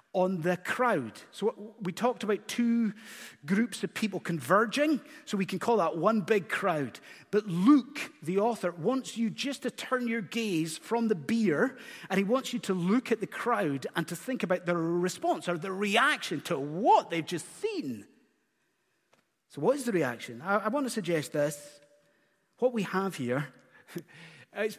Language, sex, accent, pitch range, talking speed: English, male, British, 170-250 Hz, 175 wpm